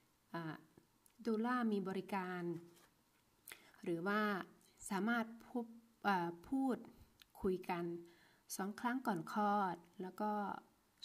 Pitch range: 175-215 Hz